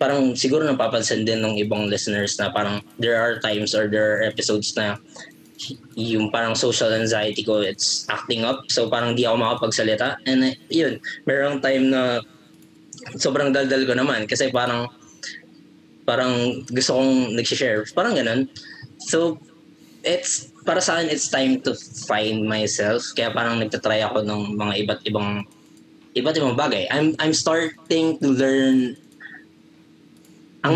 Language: Filipino